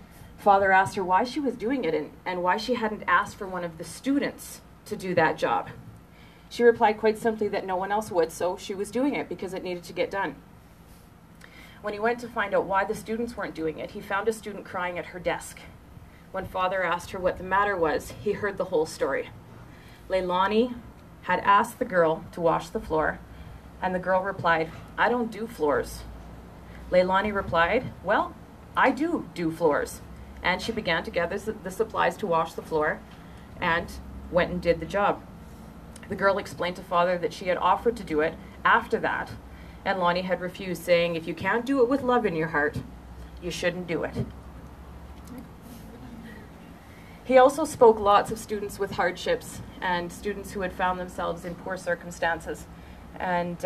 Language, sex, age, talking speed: English, female, 30-49, 190 wpm